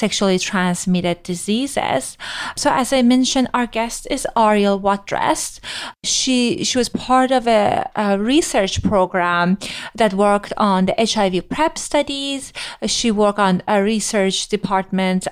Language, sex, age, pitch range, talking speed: English, female, 30-49, 195-255 Hz, 135 wpm